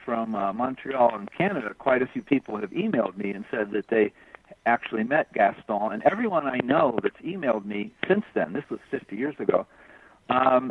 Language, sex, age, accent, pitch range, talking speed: English, male, 60-79, American, 115-155 Hz, 190 wpm